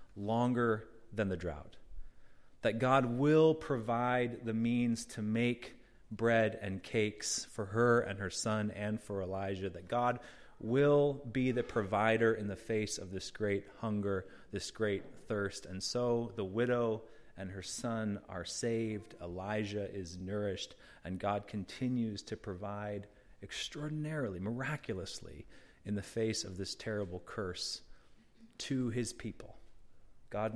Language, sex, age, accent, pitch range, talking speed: English, male, 30-49, American, 100-120 Hz, 135 wpm